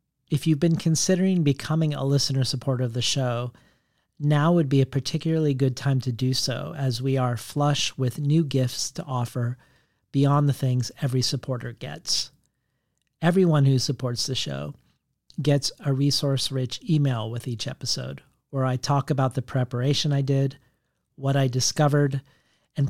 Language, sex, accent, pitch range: English, male, American, 125-145 Hz